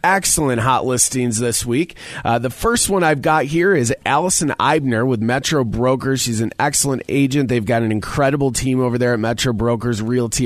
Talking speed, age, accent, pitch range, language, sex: 190 wpm, 30-49, American, 120-155 Hz, English, male